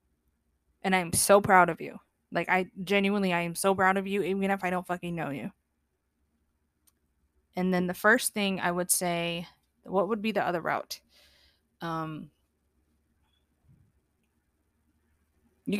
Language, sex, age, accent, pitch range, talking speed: English, female, 20-39, American, 165-195 Hz, 145 wpm